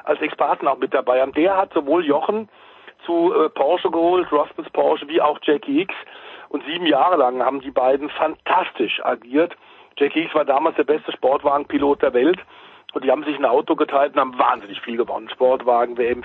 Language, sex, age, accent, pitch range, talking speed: German, male, 40-59, German, 135-170 Hz, 190 wpm